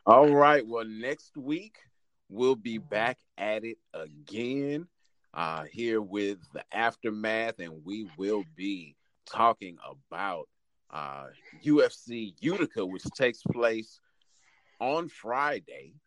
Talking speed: 110 wpm